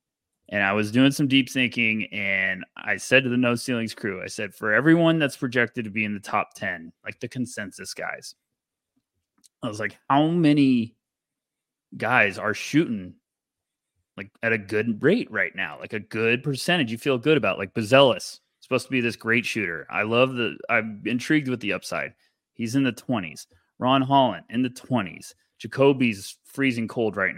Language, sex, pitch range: English, male, 110-140 Hz